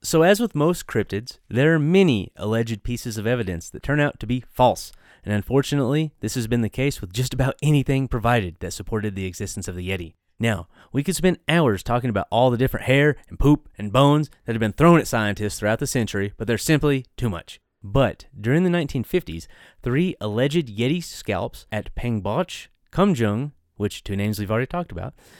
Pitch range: 100-140 Hz